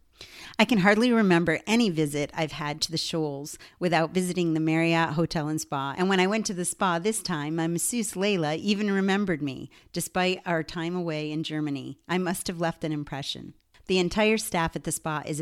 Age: 40-59